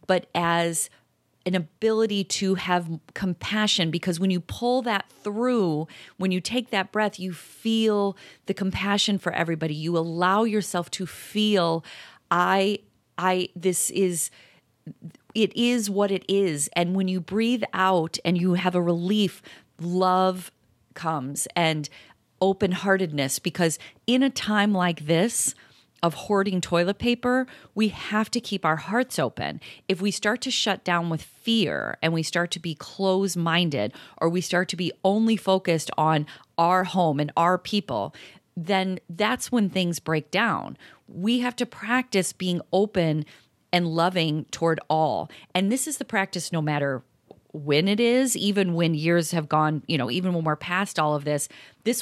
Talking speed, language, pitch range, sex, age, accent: 160 wpm, English, 165-205 Hz, female, 30-49, American